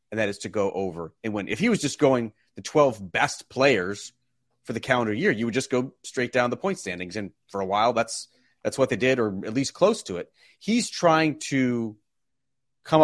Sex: male